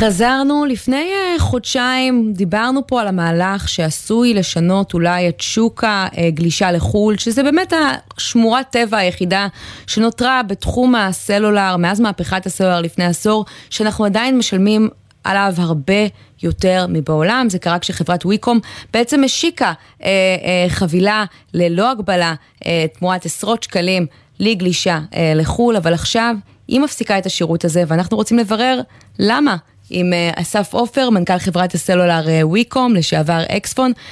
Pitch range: 175-235 Hz